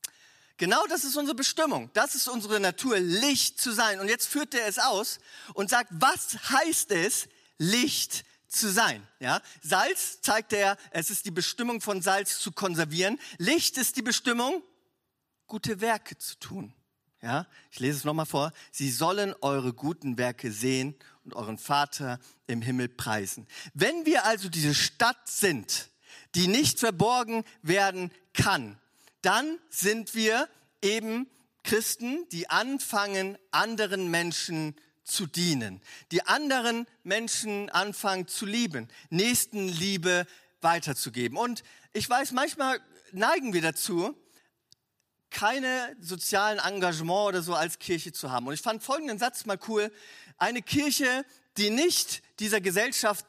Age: 40-59